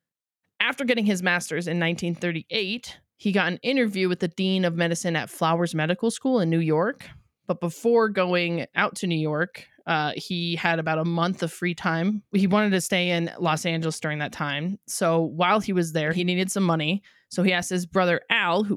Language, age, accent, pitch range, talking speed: English, 20-39, American, 165-200 Hz, 205 wpm